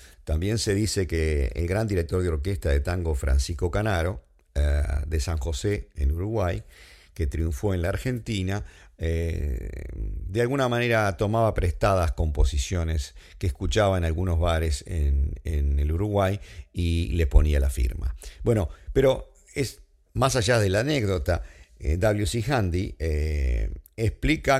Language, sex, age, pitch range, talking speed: English, male, 50-69, 75-100 Hz, 140 wpm